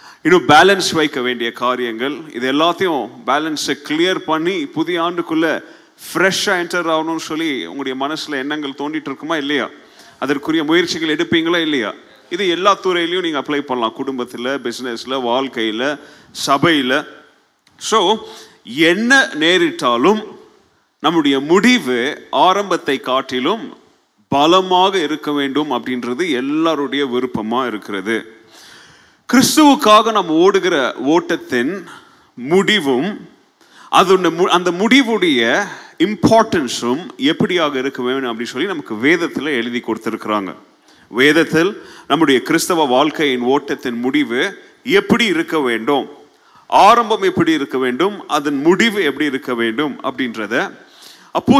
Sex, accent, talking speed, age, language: male, native, 100 wpm, 30-49, Tamil